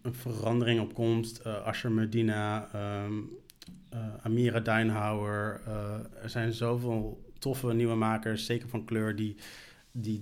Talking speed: 135 wpm